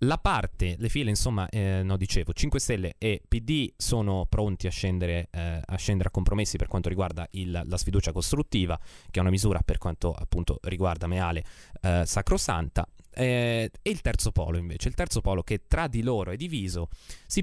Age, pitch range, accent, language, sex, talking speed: 20-39, 90-110 Hz, native, Italian, male, 190 wpm